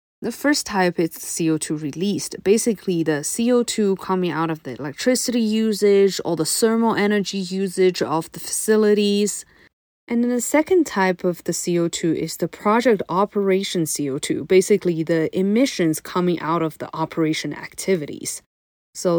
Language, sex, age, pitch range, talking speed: English, female, 20-39, 160-200 Hz, 145 wpm